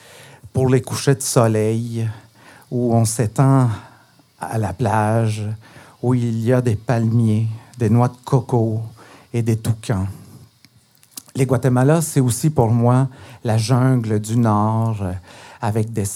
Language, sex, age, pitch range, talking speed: French, male, 50-69, 110-140 Hz, 135 wpm